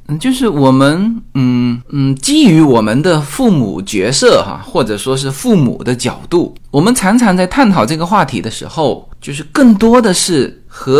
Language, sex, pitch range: Chinese, male, 130-215 Hz